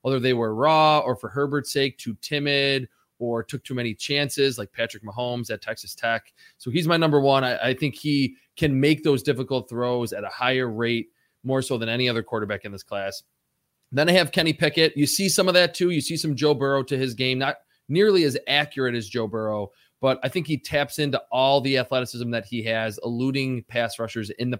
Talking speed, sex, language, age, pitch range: 220 wpm, male, English, 20-39, 115-145 Hz